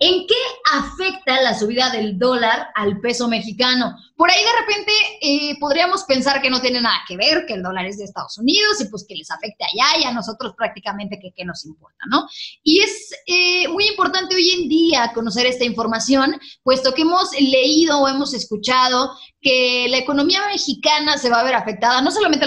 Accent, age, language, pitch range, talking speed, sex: Mexican, 20-39, Spanish, 225-310 Hz, 200 wpm, female